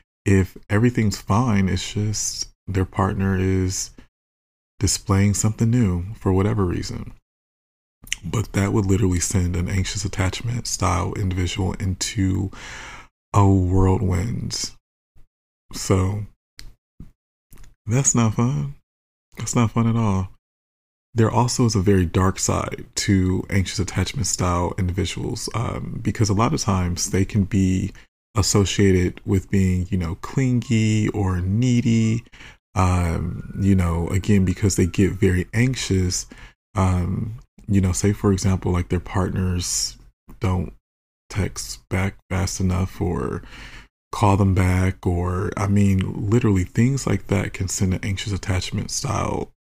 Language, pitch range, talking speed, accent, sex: English, 90-105 Hz, 125 wpm, American, male